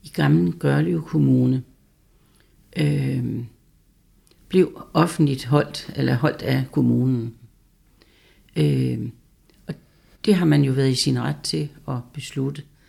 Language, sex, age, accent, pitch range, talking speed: Danish, female, 60-79, native, 125-155 Hz, 115 wpm